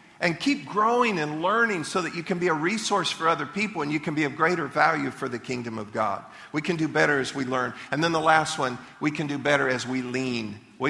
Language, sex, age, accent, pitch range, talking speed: English, male, 50-69, American, 130-165 Hz, 260 wpm